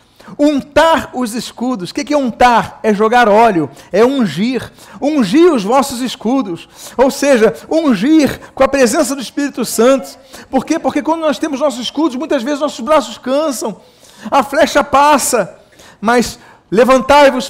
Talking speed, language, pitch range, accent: 145 wpm, Portuguese, 200-260 Hz, Brazilian